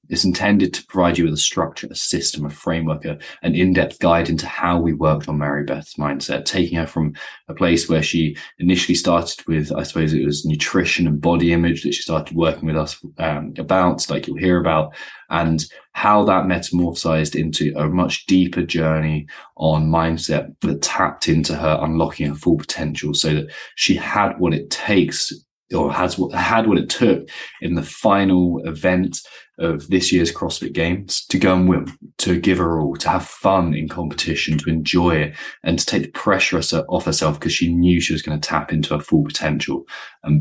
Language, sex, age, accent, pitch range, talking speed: English, male, 20-39, British, 75-90 Hz, 195 wpm